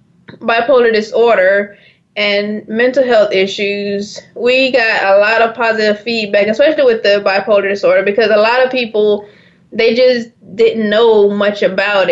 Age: 20-39